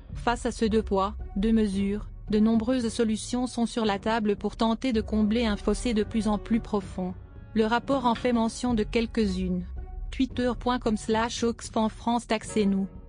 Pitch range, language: 210-235 Hz, French